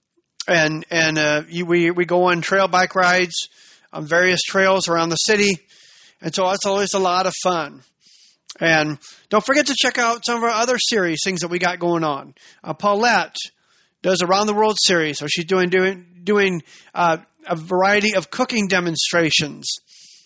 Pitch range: 170-205 Hz